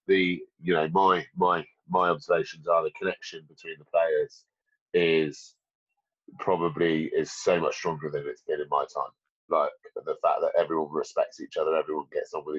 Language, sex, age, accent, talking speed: English, male, 30-49, British, 175 wpm